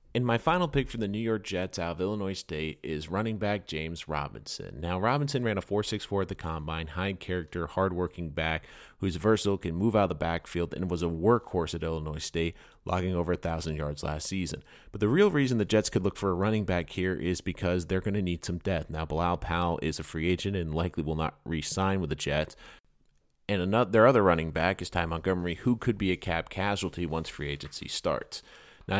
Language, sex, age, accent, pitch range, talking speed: English, male, 30-49, American, 80-100 Hz, 225 wpm